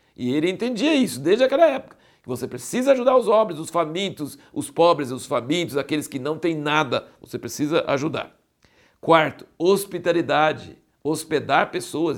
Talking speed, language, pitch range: 150 wpm, Portuguese, 120-150 Hz